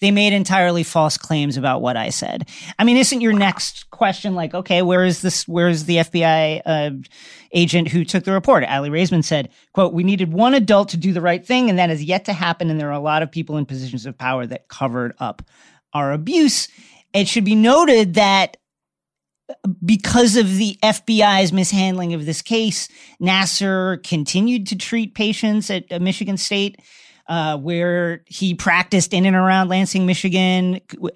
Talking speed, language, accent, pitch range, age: 185 wpm, English, American, 165-205 Hz, 40-59